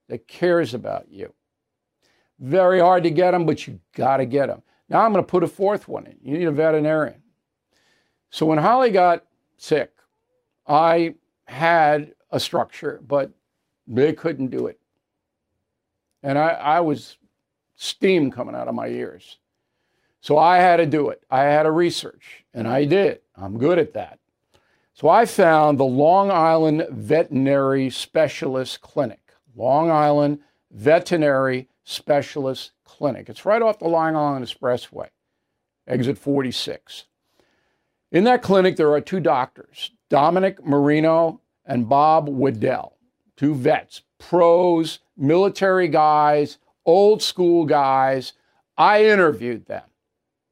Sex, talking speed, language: male, 135 wpm, English